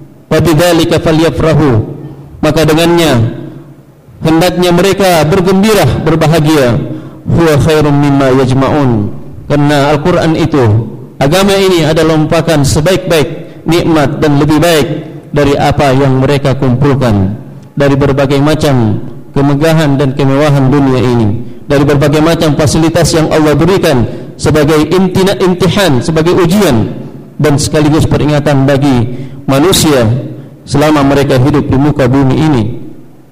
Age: 40-59